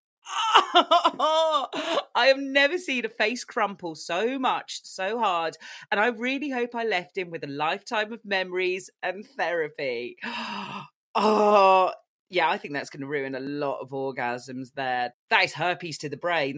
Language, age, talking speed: English, 30-49, 160 wpm